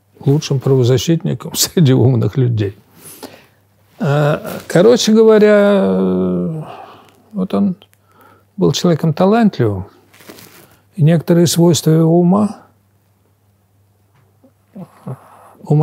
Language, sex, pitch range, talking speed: Russian, male, 100-145 Hz, 70 wpm